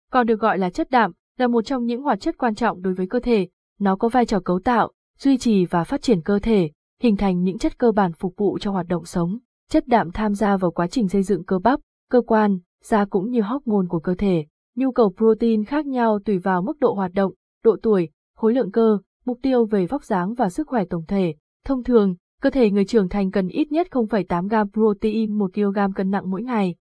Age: 20-39